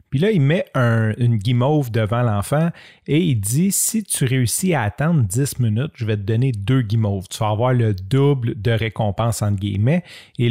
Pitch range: 110-135 Hz